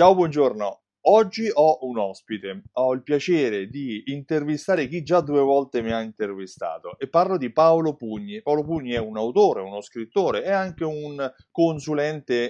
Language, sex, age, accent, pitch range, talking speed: Italian, male, 30-49, native, 110-150 Hz, 165 wpm